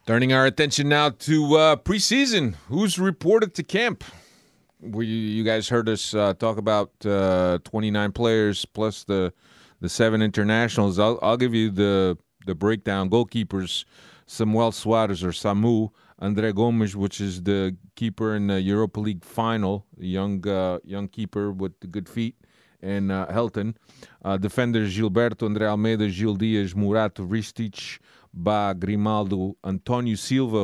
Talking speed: 145 wpm